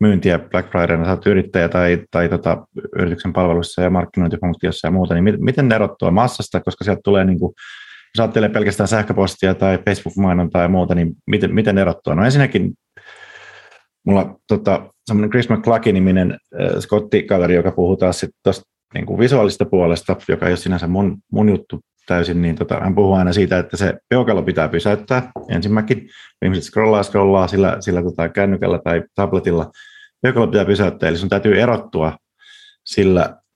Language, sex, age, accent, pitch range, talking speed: Finnish, male, 30-49, native, 90-105 Hz, 165 wpm